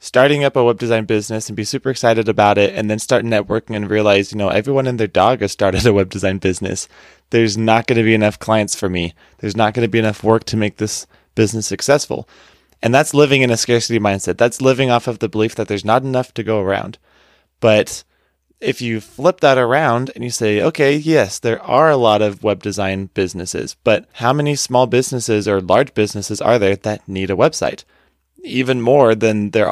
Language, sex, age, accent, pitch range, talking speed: English, male, 20-39, American, 105-125 Hz, 220 wpm